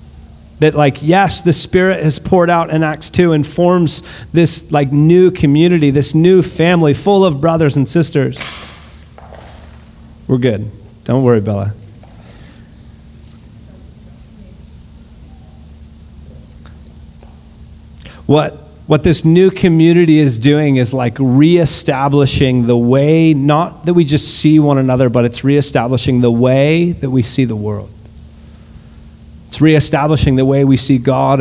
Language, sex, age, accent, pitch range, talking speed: English, male, 40-59, American, 110-155 Hz, 125 wpm